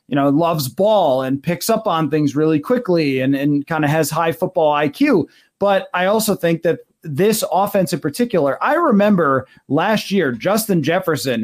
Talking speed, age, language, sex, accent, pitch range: 180 wpm, 30-49, English, male, American, 150-195 Hz